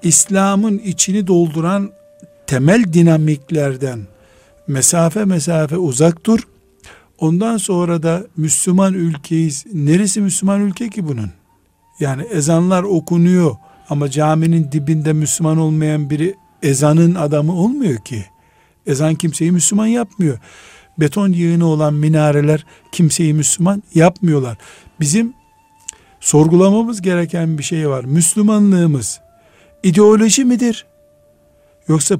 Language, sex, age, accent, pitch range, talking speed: Turkish, male, 60-79, native, 145-195 Hz, 100 wpm